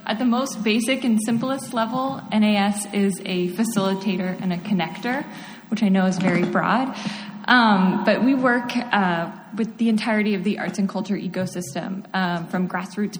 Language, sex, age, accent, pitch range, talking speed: English, female, 20-39, American, 185-220 Hz, 170 wpm